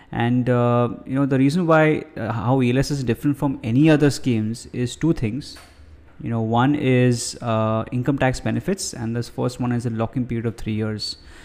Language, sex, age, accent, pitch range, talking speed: English, male, 20-39, Indian, 115-135 Hz, 200 wpm